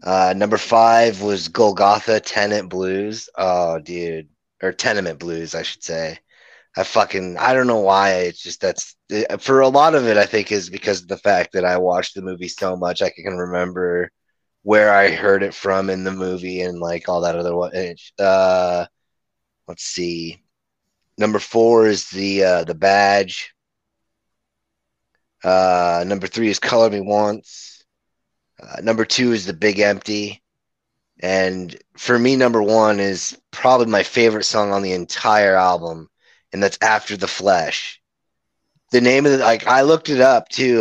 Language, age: English, 30-49